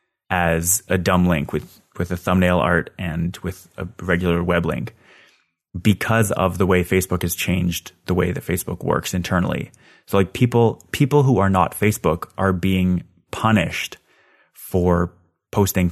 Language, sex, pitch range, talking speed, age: English, male, 90-105 Hz, 155 wpm, 30-49